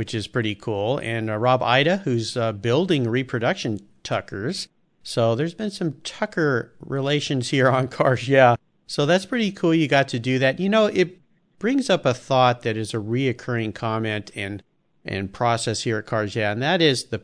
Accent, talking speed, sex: American, 190 wpm, male